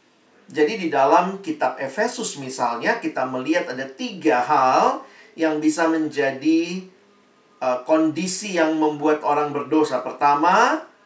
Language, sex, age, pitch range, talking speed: Indonesian, male, 40-59, 155-210 Hz, 115 wpm